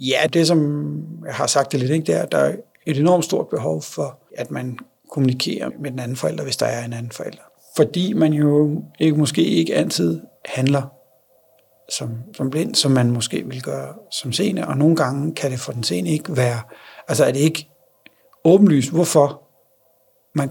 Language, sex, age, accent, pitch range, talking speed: Danish, male, 60-79, native, 130-165 Hz, 195 wpm